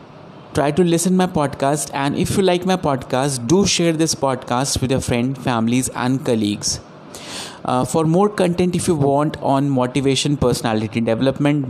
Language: Hindi